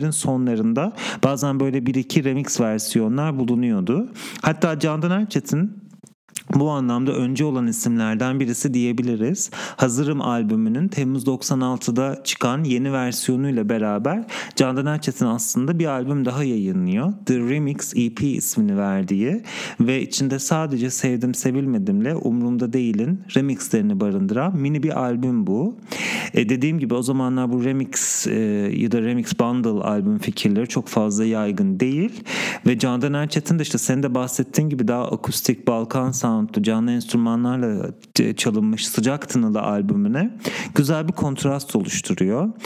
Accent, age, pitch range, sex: Turkish, 40-59, 125-190 Hz, male